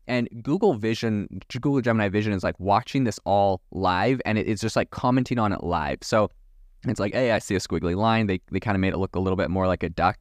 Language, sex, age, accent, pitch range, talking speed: English, male, 20-39, American, 95-115 Hz, 255 wpm